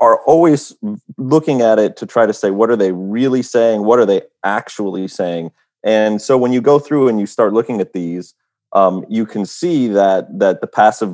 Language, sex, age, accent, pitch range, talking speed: English, male, 30-49, American, 95-125 Hz, 210 wpm